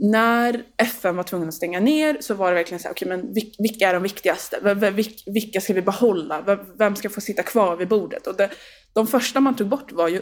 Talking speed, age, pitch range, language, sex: 235 wpm, 20-39, 180-235 Hz, Swedish, female